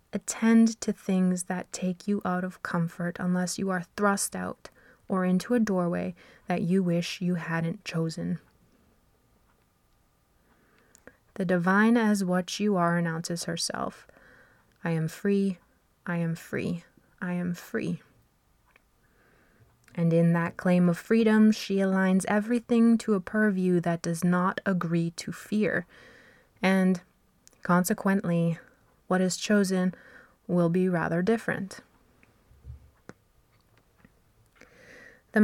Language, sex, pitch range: English, female, 175-205 Hz